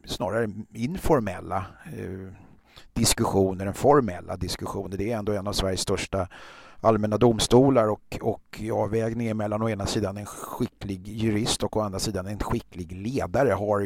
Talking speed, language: 145 wpm, Swedish